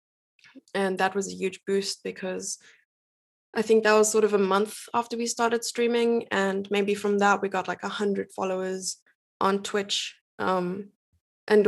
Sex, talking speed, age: female, 165 wpm, 20-39